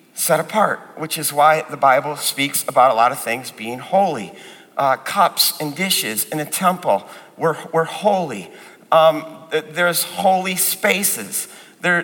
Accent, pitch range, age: American, 165-225 Hz, 50-69